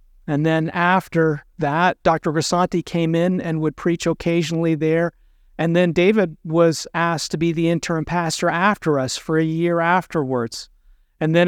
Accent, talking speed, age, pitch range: American, 160 wpm, 50-69, 150-175 Hz